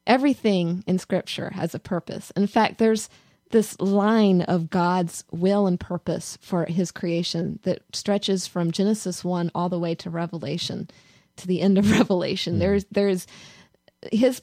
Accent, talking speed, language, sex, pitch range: American, 155 wpm, English, female, 170-195 Hz